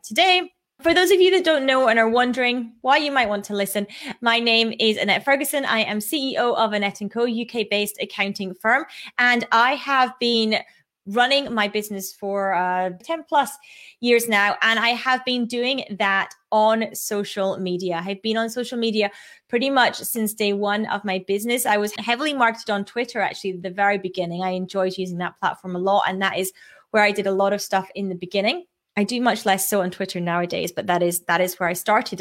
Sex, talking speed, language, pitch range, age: female, 210 wpm, English, 195-245 Hz, 20-39